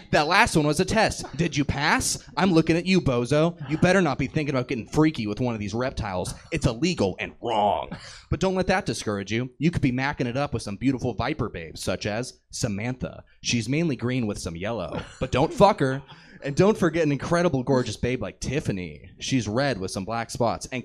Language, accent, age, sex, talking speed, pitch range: English, American, 20-39, male, 220 wpm, 120-170 Hz